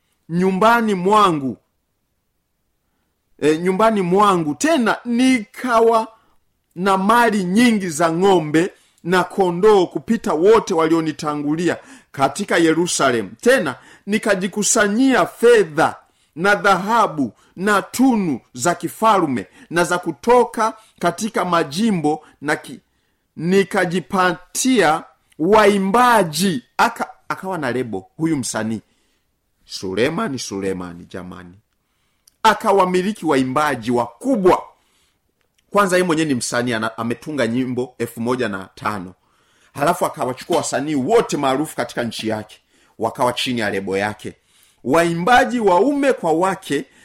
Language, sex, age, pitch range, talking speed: Swahili, male, 50-69, 130-220 Hz, 95 wpm